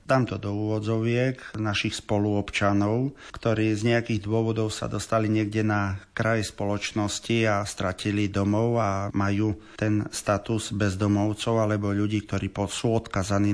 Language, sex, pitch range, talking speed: Slovak, male, 105-115 Hz, 130 wpm